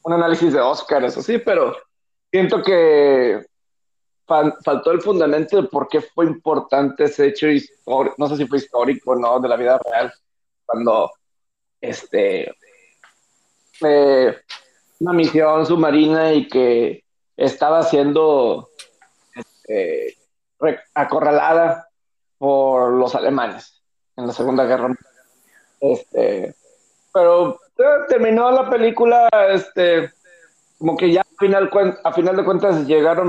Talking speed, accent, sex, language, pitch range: 125 wpm, Mexican, male, Spanish, 150-240 Hz